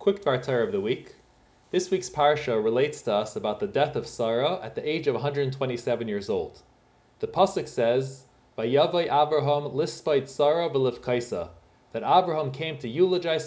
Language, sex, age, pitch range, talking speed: English, male, 20-39, 130-190 Hz, 145 wpm